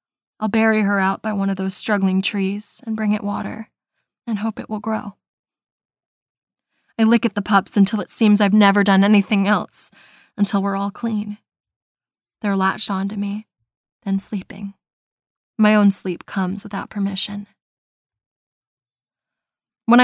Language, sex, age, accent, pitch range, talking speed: English, female, 20-39, American, 190-210 Hz, 145 wpm